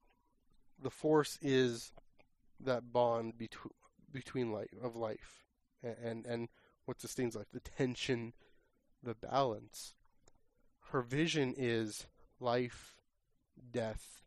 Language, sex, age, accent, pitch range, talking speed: English, male, 20-39, American, 115-130 Hz, 100 wpm